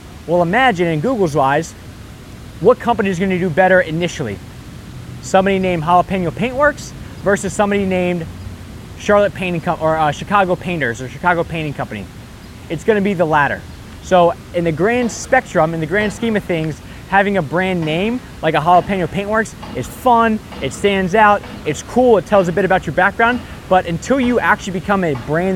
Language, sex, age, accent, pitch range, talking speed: English, male, 20-39, American, 160-200 Hz, 180 wpm